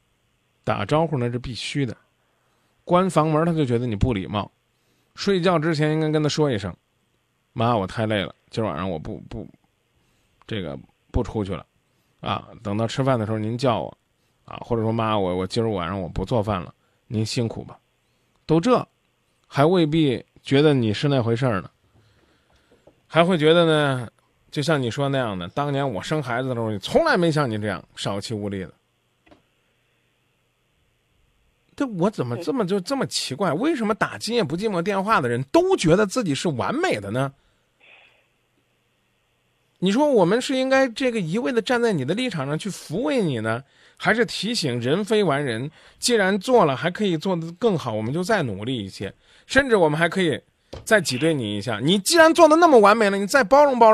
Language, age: Chinese, 20-39